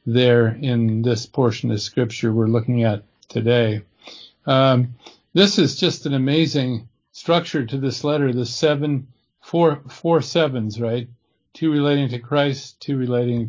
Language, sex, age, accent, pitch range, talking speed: English, male, 50-69, American, 120-150 Hz, 140 wpm